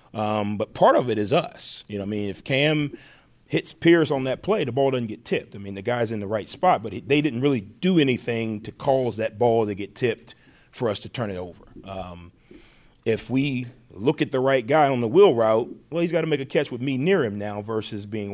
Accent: American